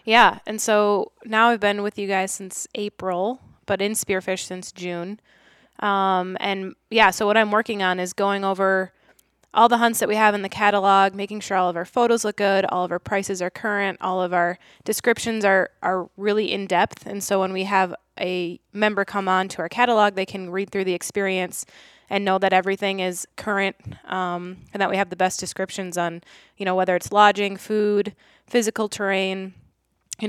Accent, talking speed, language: American, 200 wpm, English